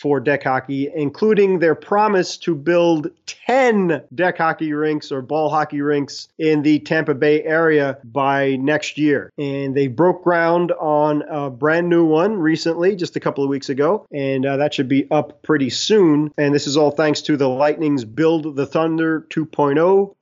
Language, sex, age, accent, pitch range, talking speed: English, male, 30-49, American, 140-170 Hz, 180 wpm